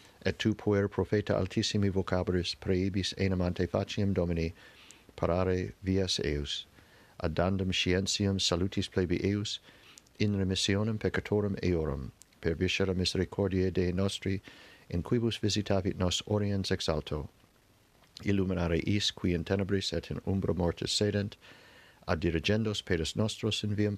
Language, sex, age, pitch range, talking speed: English, male, 50-69, 90-110 Hz, 120 wpm